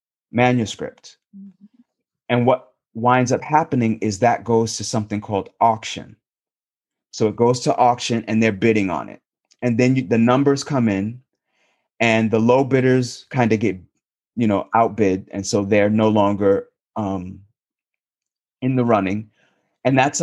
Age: 30-49